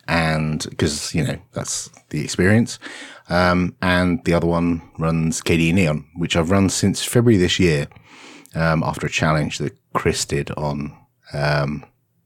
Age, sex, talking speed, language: 30-49, male, 150 wpm, English